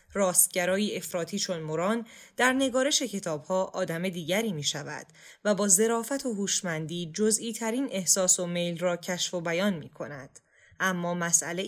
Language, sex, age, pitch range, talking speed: Persian, female, 10-29, 170-210 Hz, 150 wpm